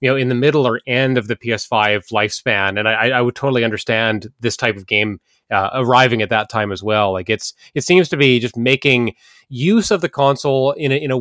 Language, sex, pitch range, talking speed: English, male, 115-145 Hz, 235 wpm